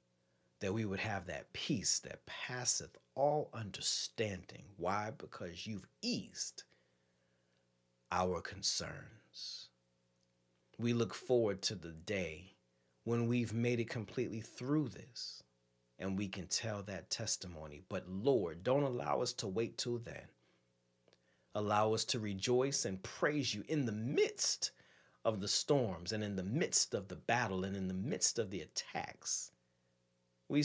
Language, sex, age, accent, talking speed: English, male, 40-59, American, 140 wpm